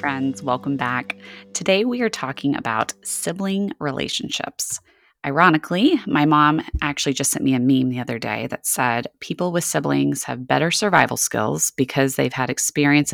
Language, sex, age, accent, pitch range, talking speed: English, female, 20-39, American, 135-170 Hz, 160 wpm